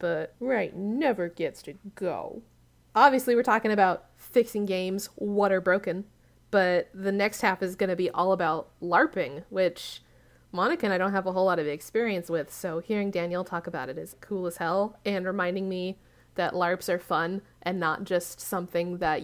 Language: English